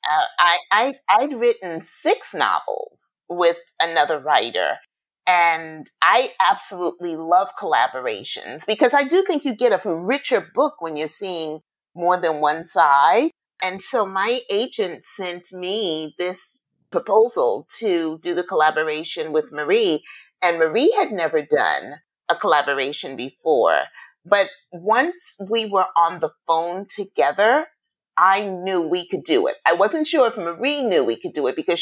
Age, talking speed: 30-49, 145 wpm